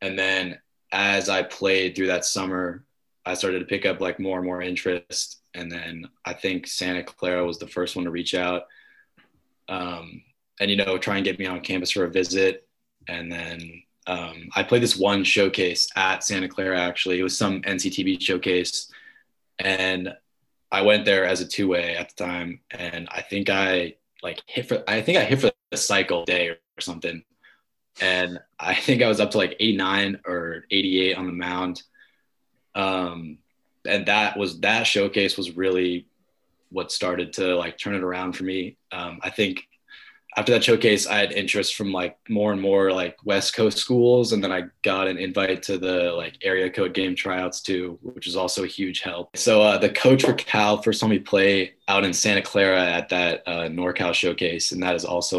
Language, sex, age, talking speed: English, male, 20-39, 195 wpm